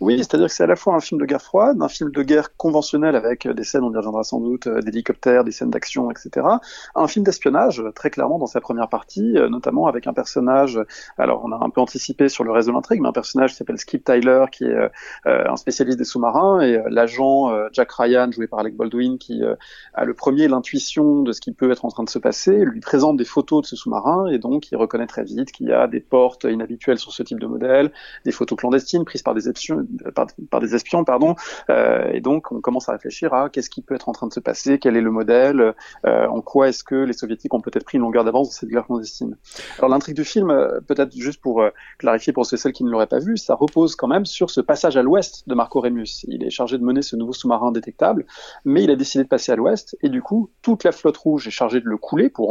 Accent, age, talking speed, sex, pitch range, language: French, 30-49, 260 wpm, male, 120-160 Hz, French